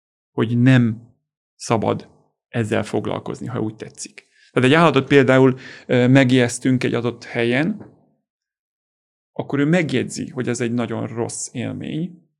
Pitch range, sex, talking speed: 125-170 Hz, male, 120 wpm